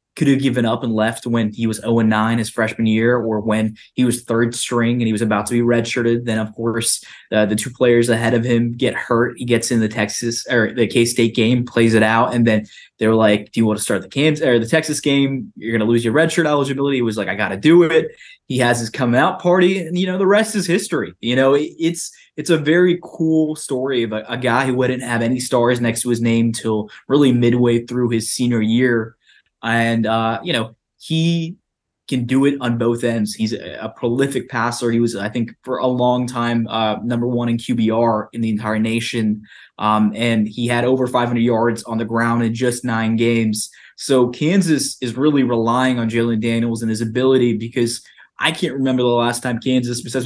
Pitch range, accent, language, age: 115-130 Hz, American, English, 20-39